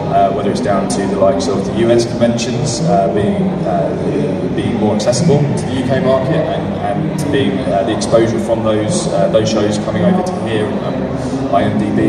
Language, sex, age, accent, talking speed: English, male, 20-39, British, 185 wpm